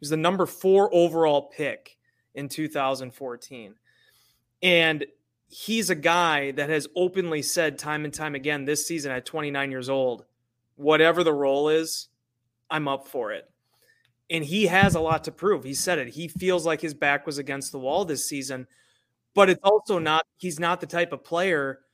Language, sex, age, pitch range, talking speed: English, male, 30-49, 140-170 Hz, 180 wpm